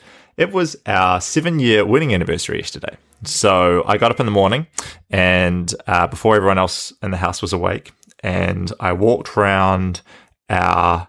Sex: male